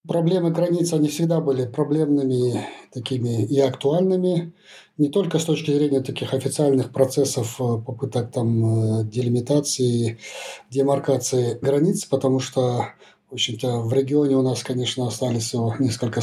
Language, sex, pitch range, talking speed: Russian, male, 125-150 Hz, 120 wpm